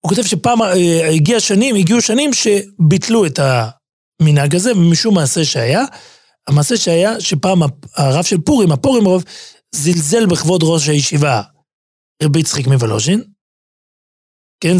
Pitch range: 145-185 Hz